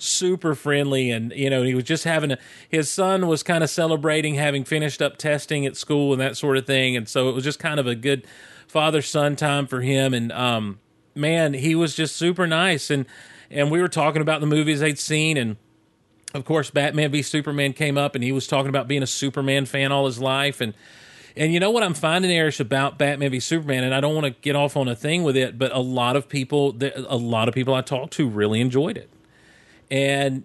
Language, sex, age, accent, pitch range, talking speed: English, male, 40-59, American, 130-155 Hz, 235 wpm